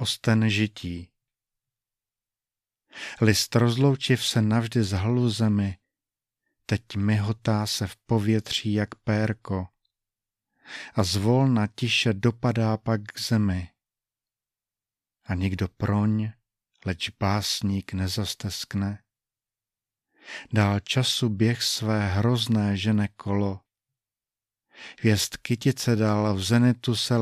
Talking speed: 95 wpm